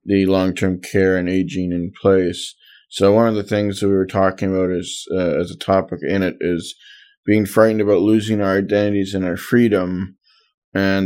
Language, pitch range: English, 95-105 Hz